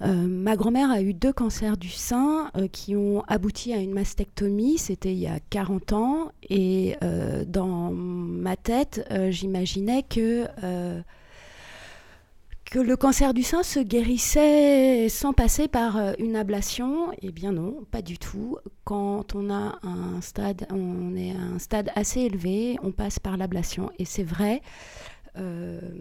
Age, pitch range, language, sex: 30-49, 195-245 Hz, French, female